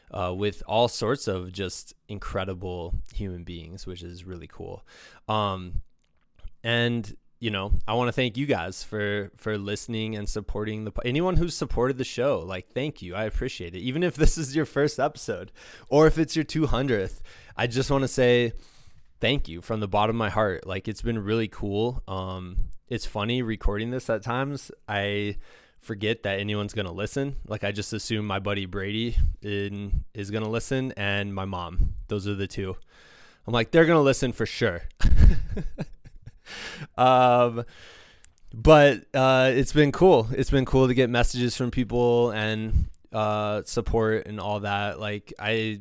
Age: 20-39